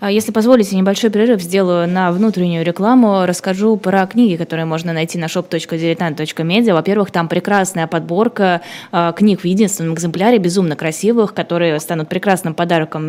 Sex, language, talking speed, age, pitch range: female, Russian, 140 wpm, 20-39, 165-200 Hz